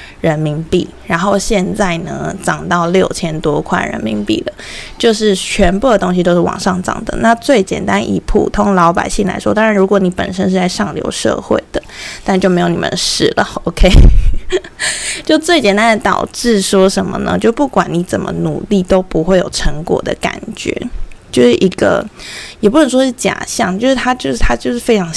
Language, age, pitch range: Chinese, 20-39, 185-245 Hz